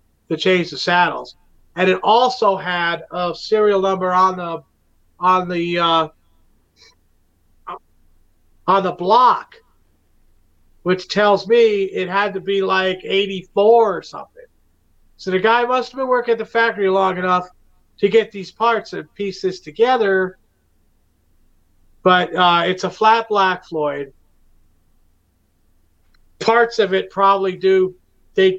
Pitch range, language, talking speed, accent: 150-190 Hz, English, 130 wpm, American